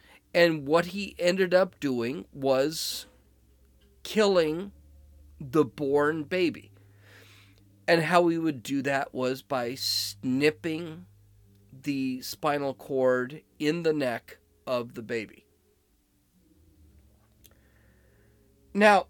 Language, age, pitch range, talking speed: English, 40-59, 100-165 Hz, 95 wpm